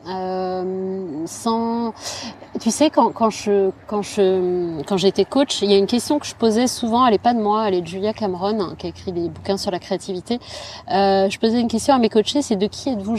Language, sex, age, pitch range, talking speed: French, female, 30-49, 180-230 Hz, 235 wpm